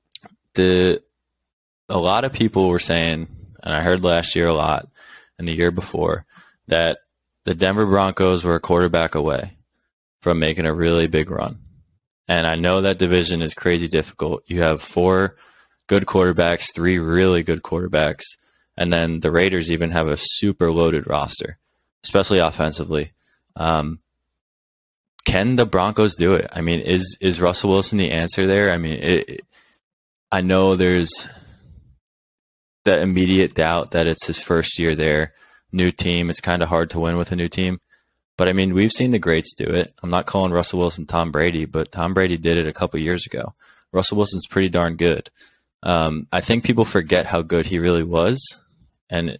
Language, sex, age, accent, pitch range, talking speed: English, male, 20-39, American, 80-95 Hz, 175 wpm